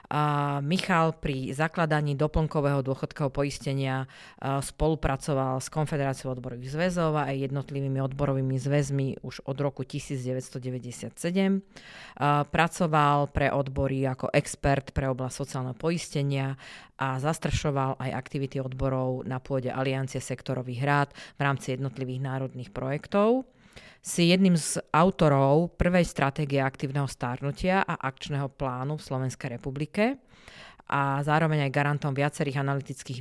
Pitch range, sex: 135-150 Hz, female